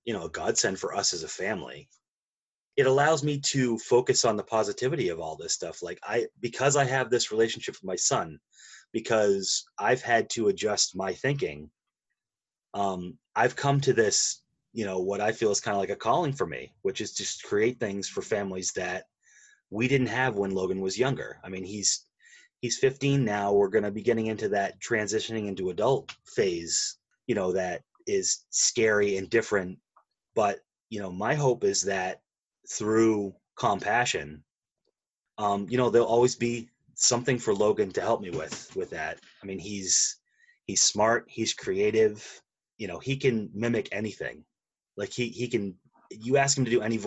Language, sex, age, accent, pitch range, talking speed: English, male, 30-49, American, 105-145 Hz, 180 wpm